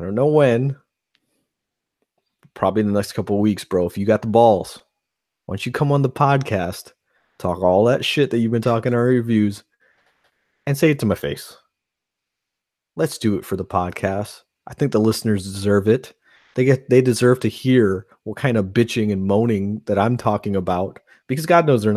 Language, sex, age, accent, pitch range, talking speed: English, male, 30-49, American, 100-125 Hz, 195 wpm